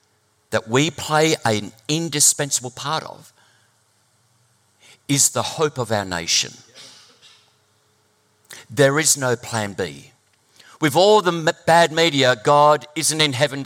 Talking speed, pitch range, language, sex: 125 wpm, 115-150 Hz, English, male